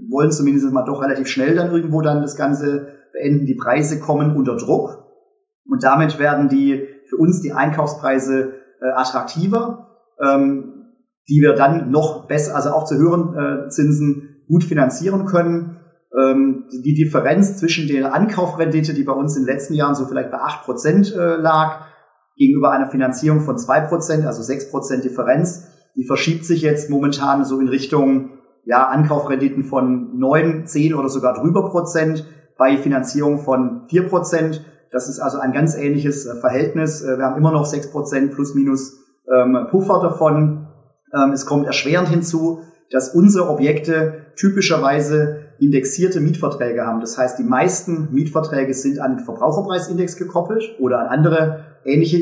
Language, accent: German, German